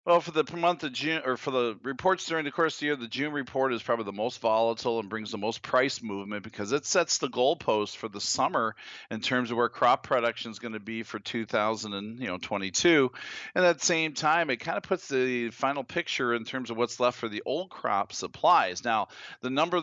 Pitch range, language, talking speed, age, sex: 115-135 Hz, English, 225 wpm, 40-59, male